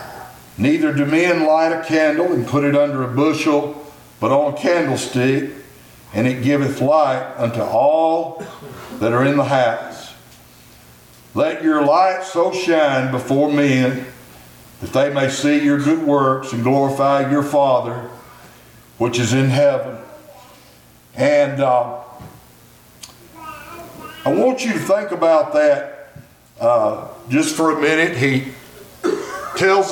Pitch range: 135-185 Hz